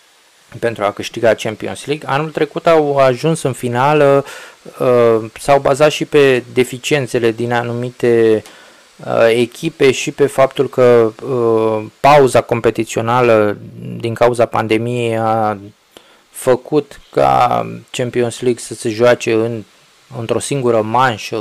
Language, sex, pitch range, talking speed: Romanian, male, 115-150 Hz, 110 wpm